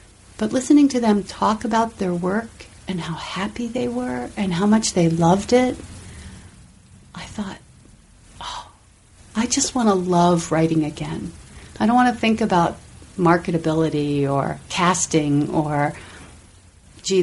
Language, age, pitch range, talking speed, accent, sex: English, 40-59, 160-190 Hz, 130 wpm, American, female